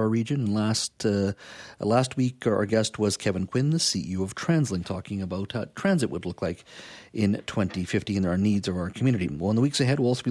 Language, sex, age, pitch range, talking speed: English, male, 50-69, 95-120 Hz, 220 wpm